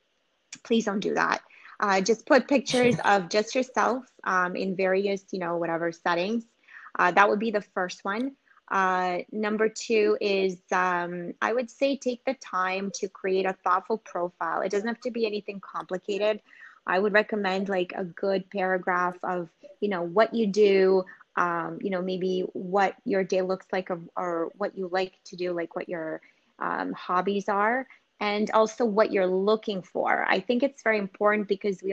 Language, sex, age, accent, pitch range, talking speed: English, female, 20-39, American, 185-220 Hz, 180 wpm